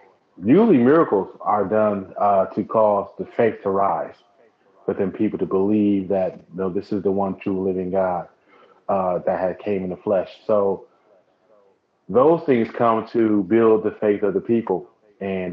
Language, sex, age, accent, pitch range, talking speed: English, male, 30-49, American, 95-105 Hz, 165 wpm